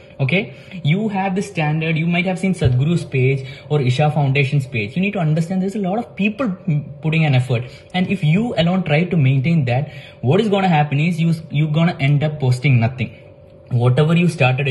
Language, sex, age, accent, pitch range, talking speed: English, male, 20-39, Indian, 135-170 Hz, 210 wpm